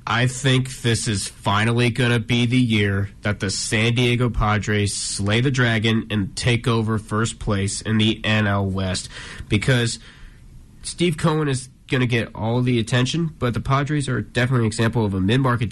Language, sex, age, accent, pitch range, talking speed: English, male, 20-39, American, 105-125 Hz, 180 wpm